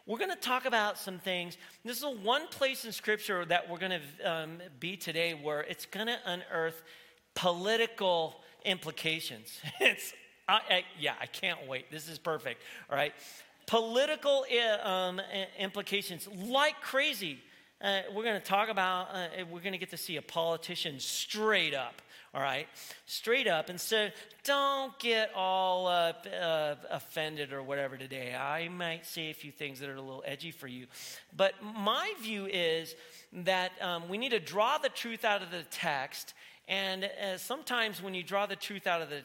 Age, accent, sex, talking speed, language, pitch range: 40-59, American, male, 180 wpm, English, 170-230 Hz